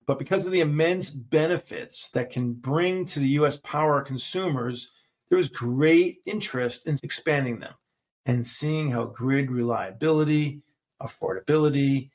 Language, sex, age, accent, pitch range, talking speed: English, male, 40-59, American, 125-160 Hz, 135 wpm